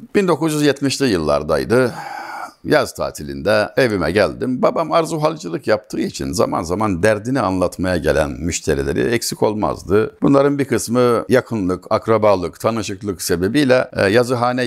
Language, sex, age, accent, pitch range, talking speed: Turkish, male, 60-79, native, 100-145 Hz, 105 wpm